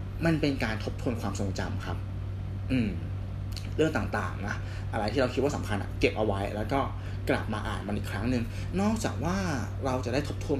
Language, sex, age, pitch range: Thai, male, 20-39, 95-115 Hz